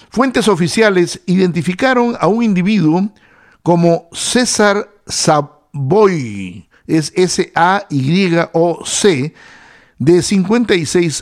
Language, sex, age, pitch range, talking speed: English, male, 60-79, 150-195 Hz, 70 wpm